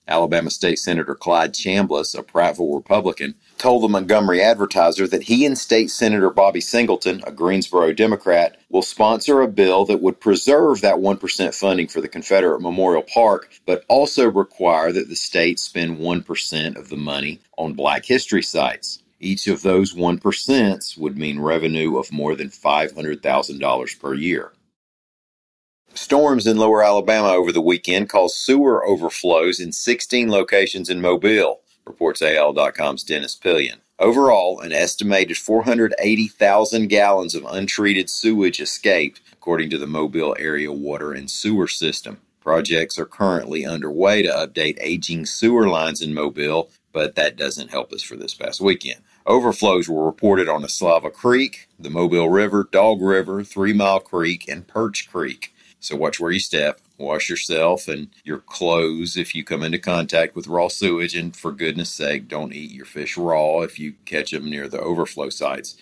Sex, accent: male, American